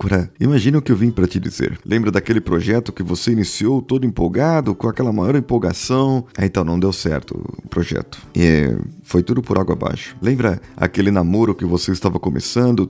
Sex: male